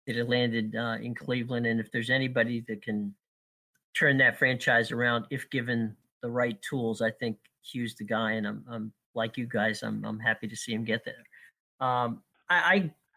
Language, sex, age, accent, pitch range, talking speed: English, male, 50-69, American, 120-155 Hz, 190 wpm